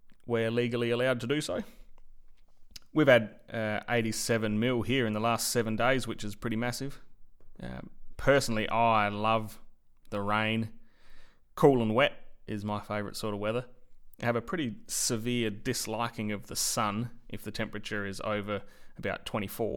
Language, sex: English, male